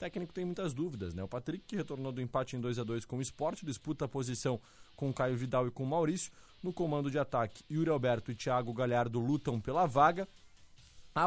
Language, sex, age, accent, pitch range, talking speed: Portuguese, male, 20-39, Brazilian, 125-160 Hz, 210 wpm